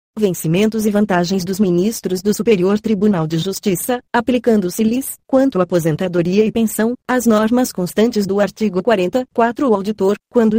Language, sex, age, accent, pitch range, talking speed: Portuguese, female, 30-49, Brazilian, 180-220 Hz, 140 wpm